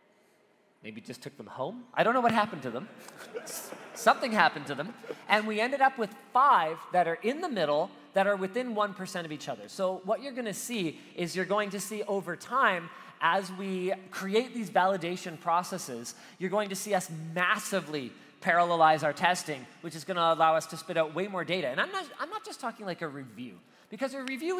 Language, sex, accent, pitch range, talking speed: English, male, American, 175-230 Hz, 205 wpm